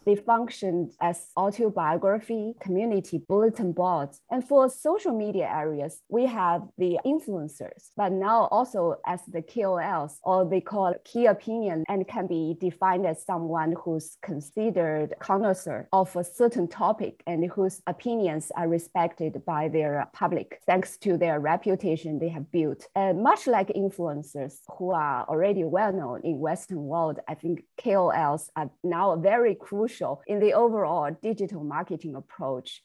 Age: 20-39